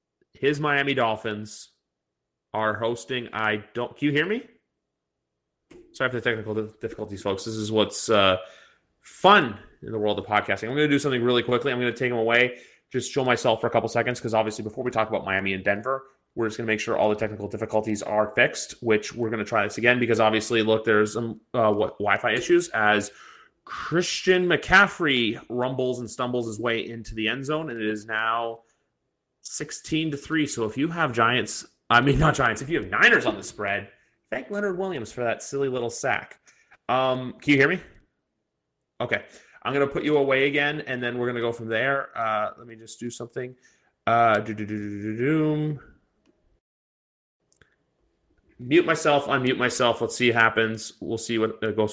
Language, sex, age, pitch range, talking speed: English, male, 30-49, 110-140 Hz, 190 wpm